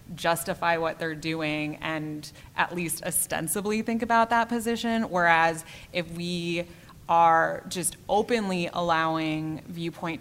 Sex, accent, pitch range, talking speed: female, American, 155-180 Hz, 120 wpm